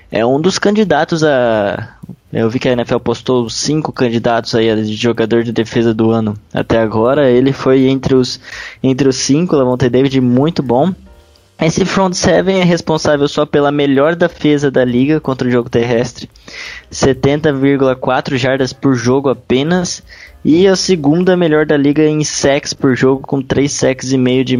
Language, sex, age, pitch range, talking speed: Portuguese, male, 10-29, 125-145 Hz, 175 wpm